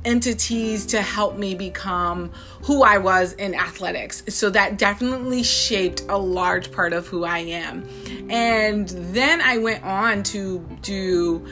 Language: English